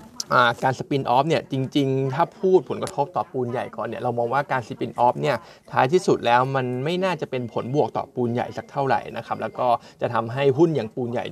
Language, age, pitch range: Thai, 20-39, 125-150 Hz